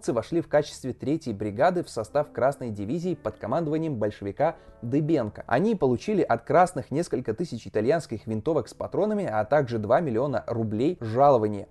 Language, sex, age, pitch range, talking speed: Russian, male, 20-39, 115-155 Hz, 150 wpm